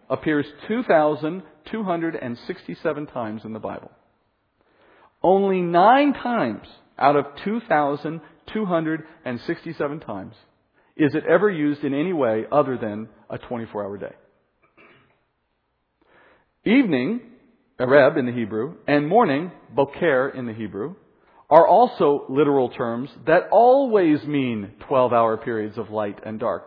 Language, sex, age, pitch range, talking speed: English, male, 40-59, 125-180 Hz, 110 wpm